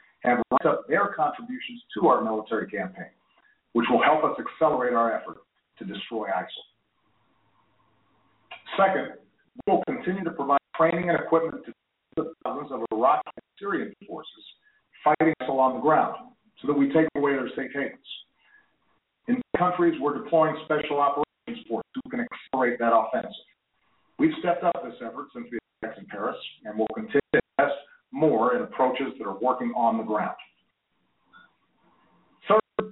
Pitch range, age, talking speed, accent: 145-220 Hz, 50-69, 155 wpm, American